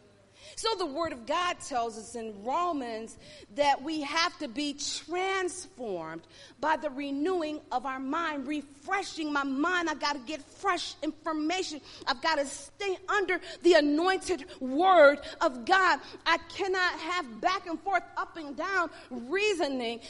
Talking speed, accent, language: 150 wpm, American, English